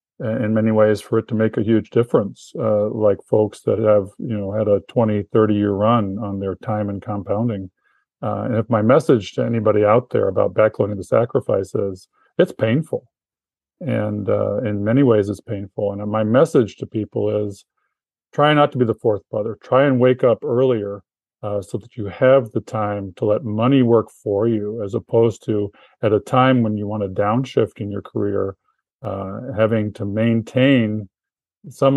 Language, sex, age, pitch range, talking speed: English, male, 50-69, 105-125 Hz, 190 wpm